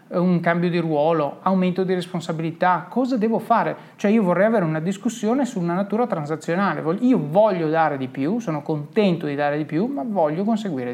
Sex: male